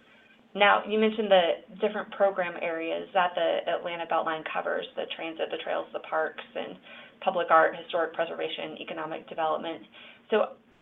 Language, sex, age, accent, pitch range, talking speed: English, female, 30-49, American, 170-215 Hz, 145 wpm